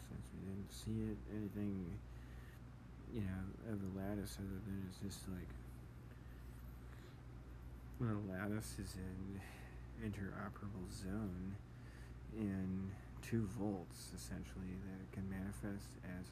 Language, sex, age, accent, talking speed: English, male, 40-59, American, 120 wpm